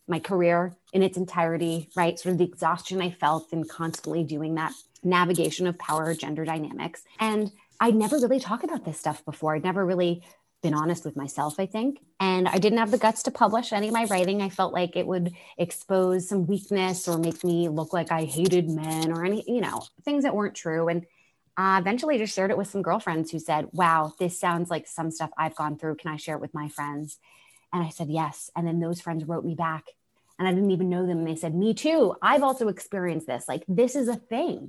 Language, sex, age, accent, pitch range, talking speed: English, female, 20-39, American, 160-195 Hz, 230 wpm